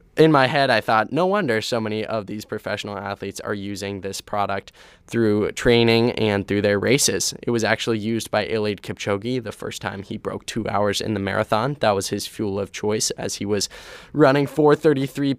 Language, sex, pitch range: English, male, 100-120 Hz